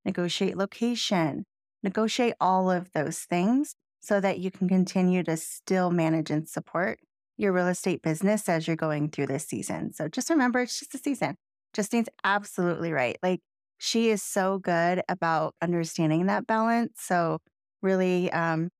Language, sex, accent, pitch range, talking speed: English, female, American, 175-220 Hz, 155 wpm